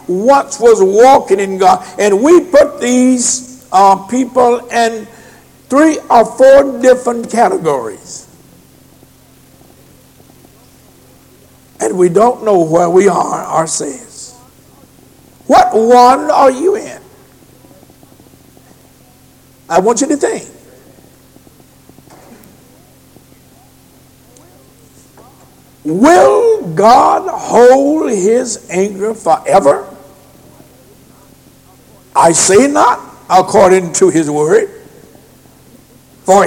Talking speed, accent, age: 80 wpm, American, 60-79